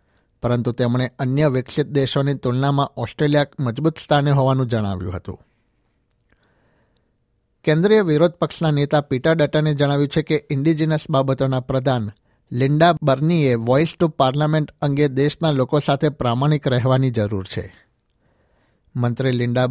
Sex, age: male, 60-79